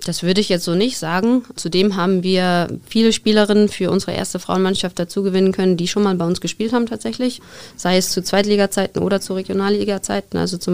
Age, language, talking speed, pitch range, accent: 20-39, German, 200 wpm, 170-200 Hz, German